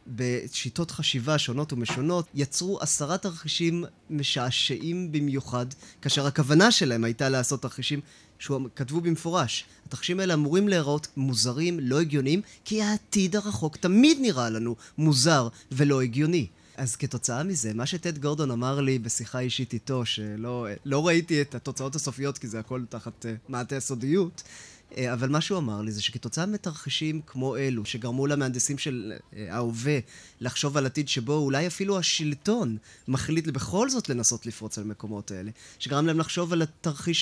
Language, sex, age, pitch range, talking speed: Hebrew, male, 20-39, 125-165 Hz, 150 wpm